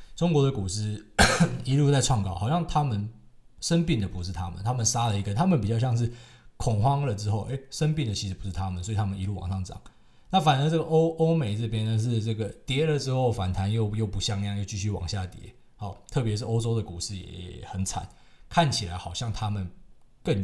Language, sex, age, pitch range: Chinese, male, 20-39, 100-125 Hz